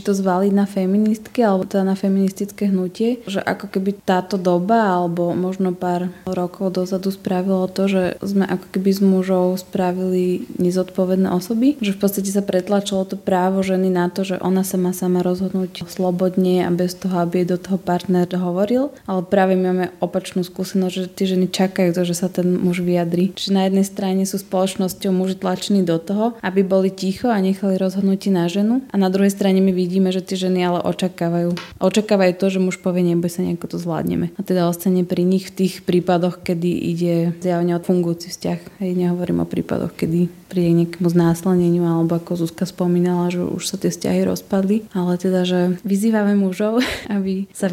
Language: Slovak